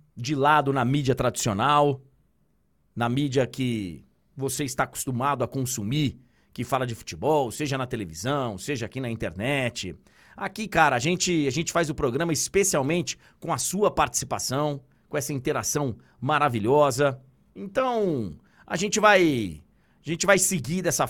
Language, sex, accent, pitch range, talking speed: Portuguese, male, Brazilian, 115-160 Hz, 135 wpm